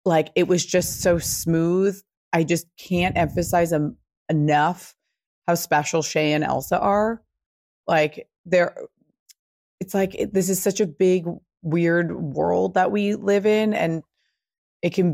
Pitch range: 155-180 Hz